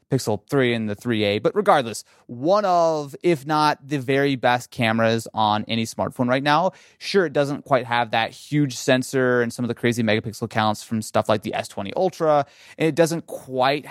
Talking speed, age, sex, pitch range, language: 190 wpm, 30-49, male, 115-165 Hz, English